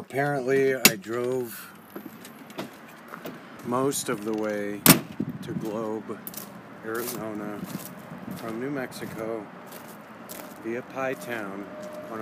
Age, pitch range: 40-59, 100-120 Hz